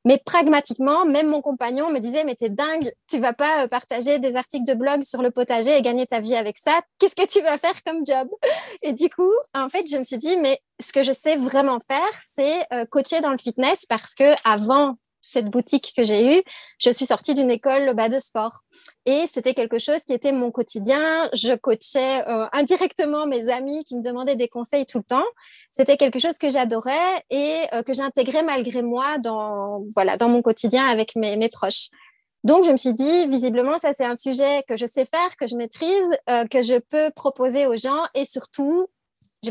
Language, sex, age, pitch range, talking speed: French, female, 20-39, 240-290 Hz, 215 wpm